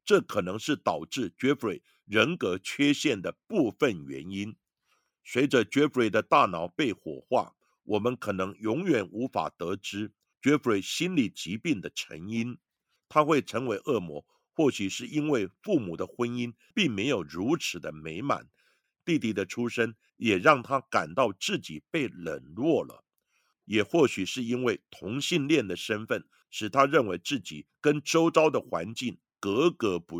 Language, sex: Chinese, male